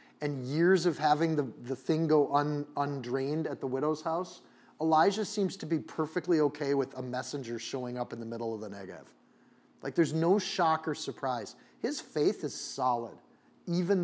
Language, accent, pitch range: English, American, 135-175 Hz